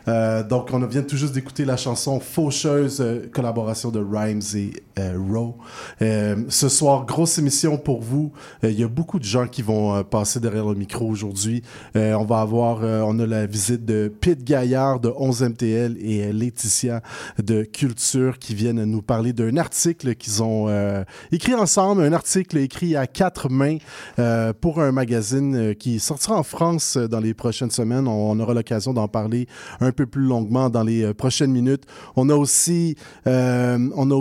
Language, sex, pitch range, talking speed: French, male, 115-150 Hz, 190 wpm